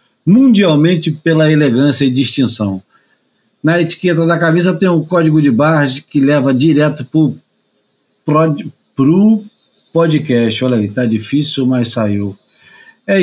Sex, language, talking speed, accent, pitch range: male, Portuguese, 125 wpm, Brazilian, 145-185 Hz